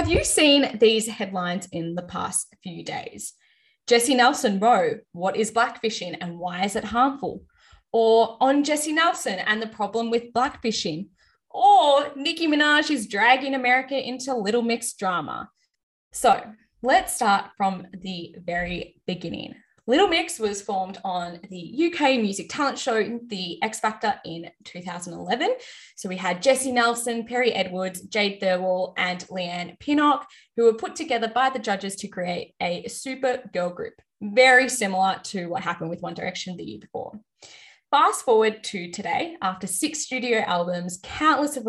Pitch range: 185-255 Hz